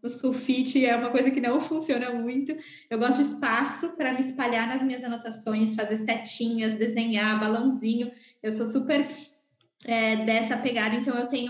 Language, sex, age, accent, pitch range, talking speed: Portuguese, female, 10-29, Brazilian, 220-265 Hz, 165 wpm